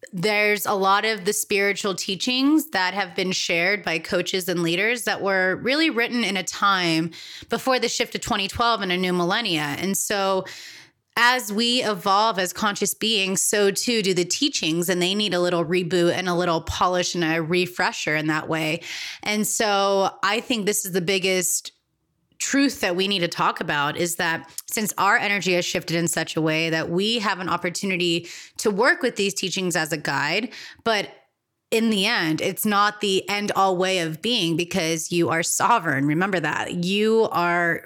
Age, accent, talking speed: 20-39, American, 190 wpm